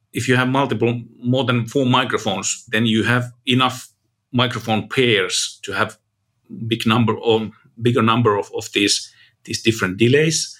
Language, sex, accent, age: English, male, Finnish, 50-69